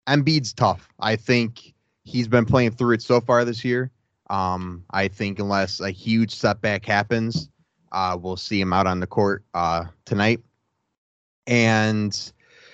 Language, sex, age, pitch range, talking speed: English, male, 20-39, 100-120 Hz, 150 wpm